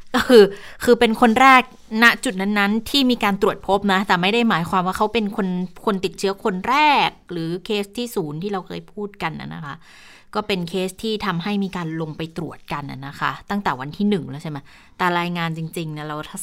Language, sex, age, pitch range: Thai, female, 20-39, 170-205 Hz